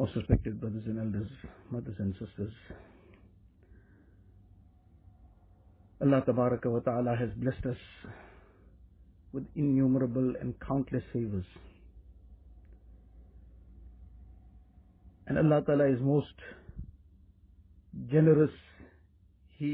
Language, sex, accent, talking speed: English, male, Indian, 75 wpm